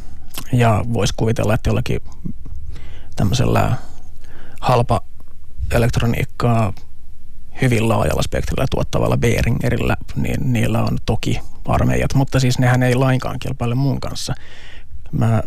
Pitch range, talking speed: 90-125 Hz, 100 wpm